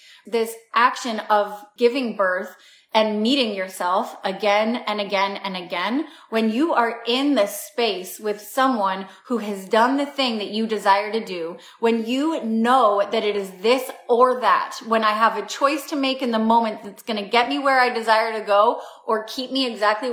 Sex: female